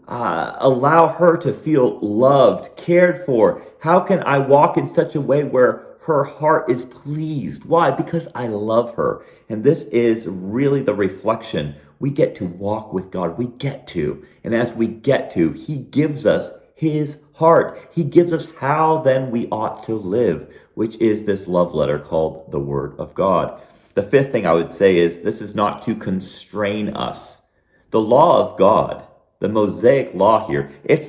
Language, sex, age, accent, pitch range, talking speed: English, male, 40-59, American, 100-145 Hz, 180 wpm